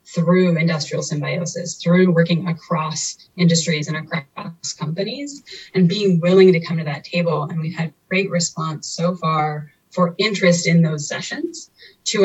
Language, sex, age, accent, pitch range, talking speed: English, female, 20-39, American, 160-180 Hz, 150 wpm